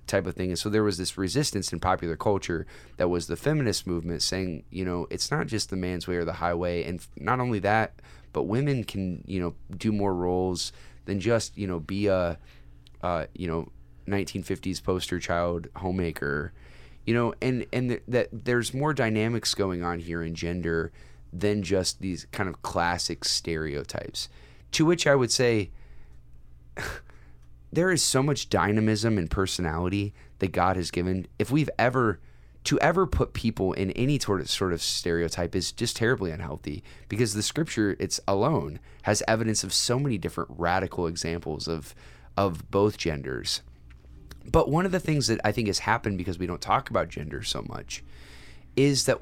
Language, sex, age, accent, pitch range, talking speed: English, male, 30-49, American, 85-110 Hz, 180 wpm